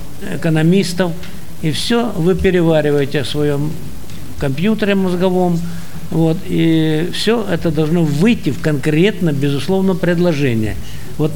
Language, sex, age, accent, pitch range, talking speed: Russian, male, 60-79, native, 150-190 Hz, 105 wpm